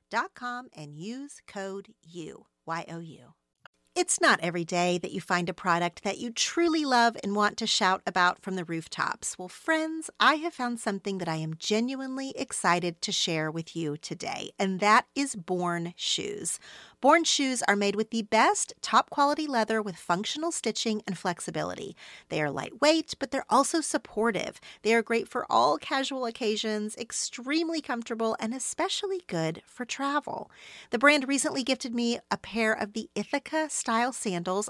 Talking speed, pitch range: 170 wpm, 185-270 Hz